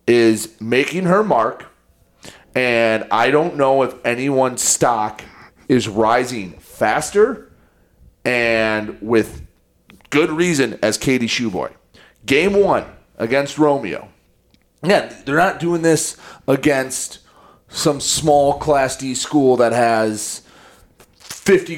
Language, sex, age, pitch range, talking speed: English, male, 30-49, 115-155 Hz, 105 wpm